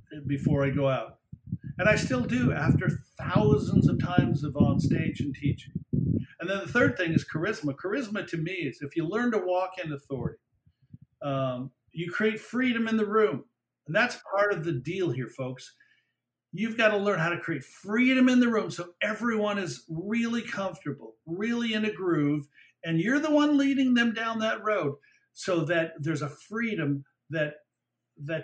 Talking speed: 180 wpm